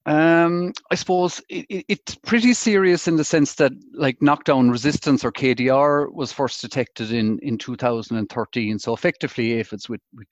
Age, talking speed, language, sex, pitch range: 40-59, 170 wpm, English, male, 110-140 Hz